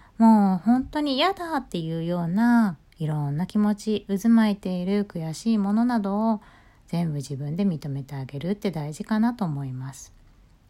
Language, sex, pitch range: Japanese, female, 150-230 Hz